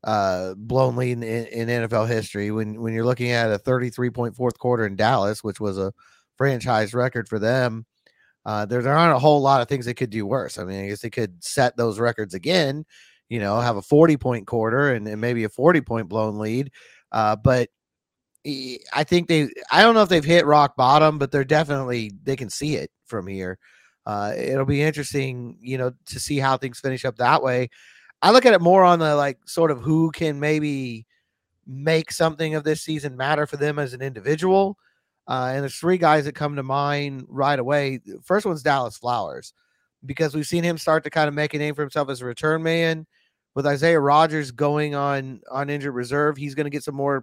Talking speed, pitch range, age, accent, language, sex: 215 wpm, 120-150 Hz, 30-49, American, English, male